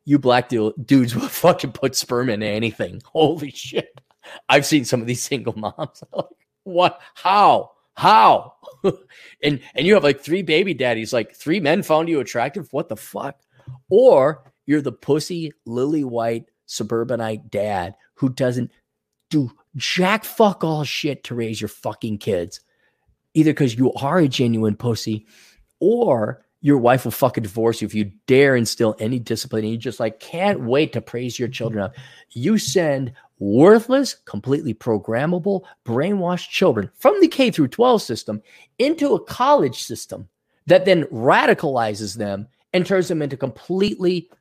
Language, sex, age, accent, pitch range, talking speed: English, male, 30-49, American, 115-155 Hz, 155 wpm